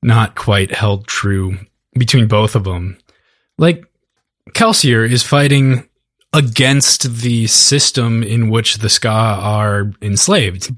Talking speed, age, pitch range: 115 wpm, 20-39, 105-130 Hz